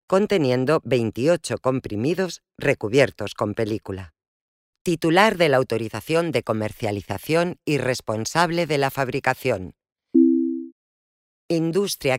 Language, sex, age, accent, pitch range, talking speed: Spanish, female, 40-59, Spanish, 110-160 Hz, 90 wpm